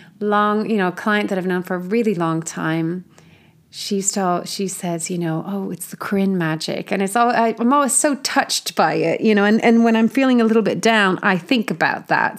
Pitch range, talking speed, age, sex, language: 175-230 Hz, 230 wpm, 30-49, female, English